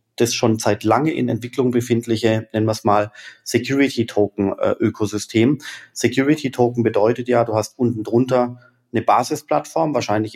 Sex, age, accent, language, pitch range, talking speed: male, 30-49, German, German, 110-125 Hz, 125 wpm